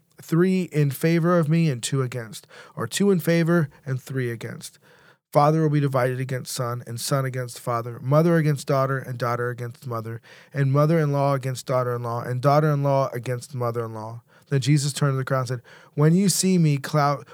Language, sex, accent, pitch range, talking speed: English, male, American, 130-160 Hz, 210 wpm